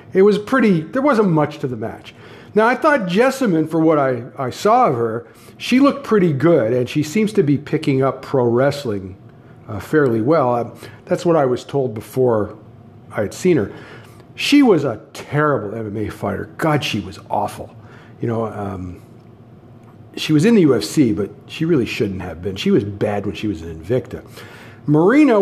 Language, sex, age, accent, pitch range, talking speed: English, male, 50-69, American, 115-170 Hz, 190 wpm